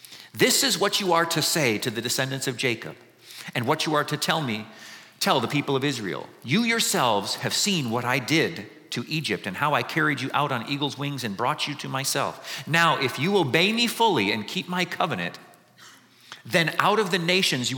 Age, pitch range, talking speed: 50-69, 125-180 Hz, 215 wpm